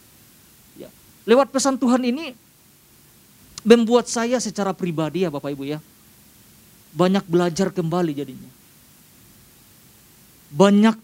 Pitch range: 175-270 Hz